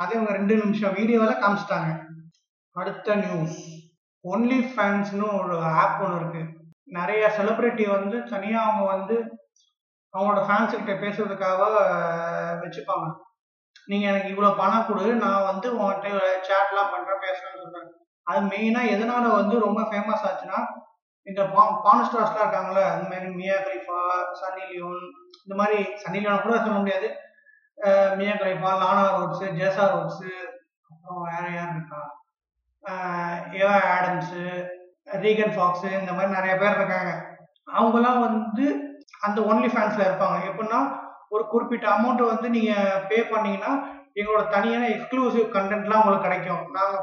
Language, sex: Tamil, male